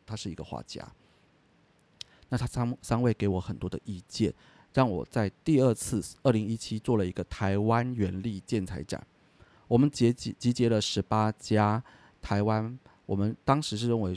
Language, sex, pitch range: Chinese, male, 95-120 Hz